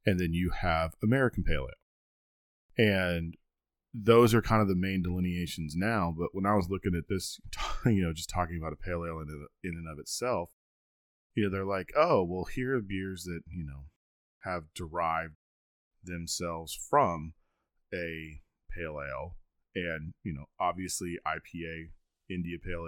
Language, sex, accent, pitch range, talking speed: English, male, American, 85-100 Hz, 160 wpm